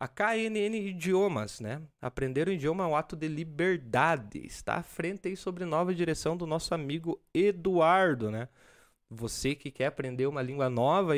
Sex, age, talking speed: male, 20-39, 165 wpm